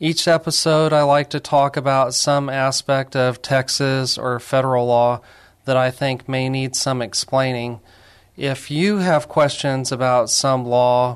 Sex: male